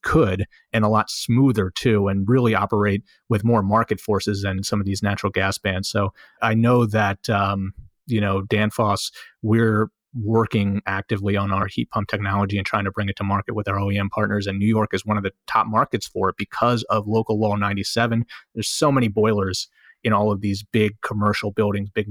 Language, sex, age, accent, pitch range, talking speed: English, male, 30-49, American, 100-110 Hz, 205 wpm